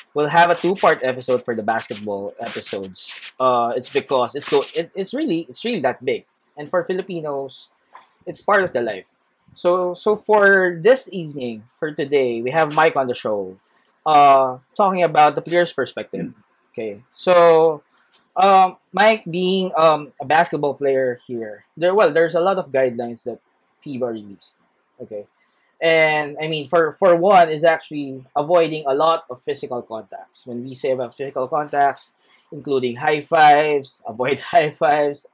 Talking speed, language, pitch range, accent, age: 160 wpm, English, 130-180 Hz, Filipino, 20-39